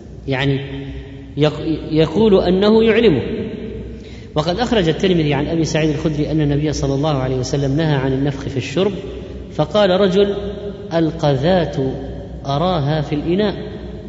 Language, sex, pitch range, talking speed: Arabic, female, 140-195 Hz, 120 wpm